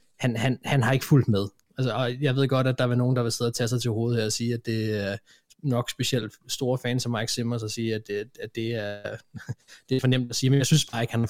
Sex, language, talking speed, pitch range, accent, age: male, Danish, 305 wpm, 120-135 Hz, native, 20-39